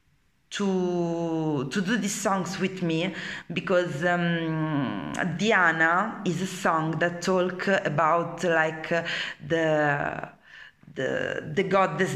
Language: Danish